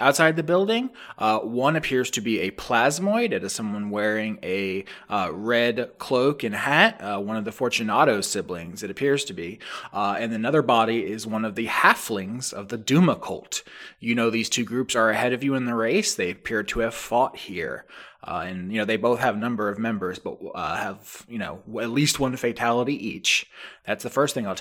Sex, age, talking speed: male, 20-39, 210 wpm